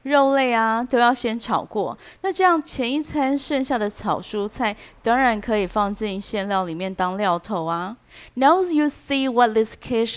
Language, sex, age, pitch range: Chinese, female, 30-49, 205-270 Hz